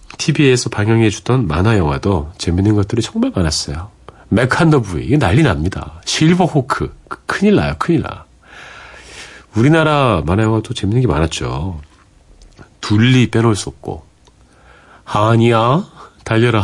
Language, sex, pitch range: Korean, male, 80-125 Hz